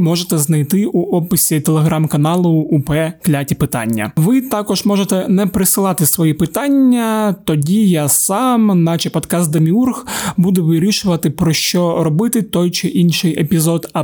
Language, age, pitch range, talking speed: Ukrainian, 20-39, 160-195 Hz, 130 wpm